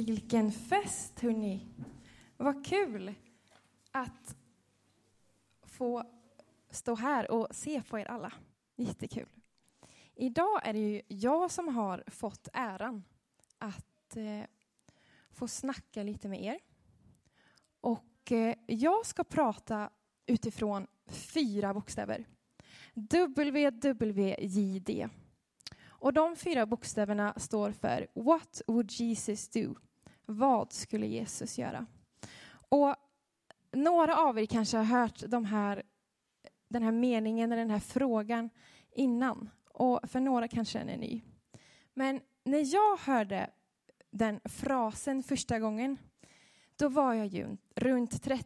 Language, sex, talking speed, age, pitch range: Swedish, female, 115 wpm, 20-39, 215-265 Hz